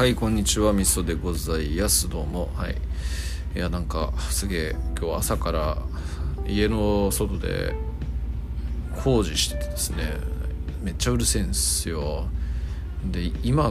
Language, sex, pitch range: Japanese, male, 70-95 Hz